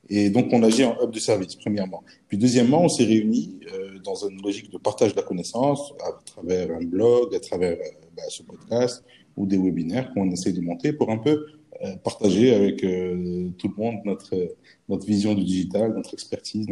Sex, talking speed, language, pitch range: male, 205 wpm, French, 90-115 Hz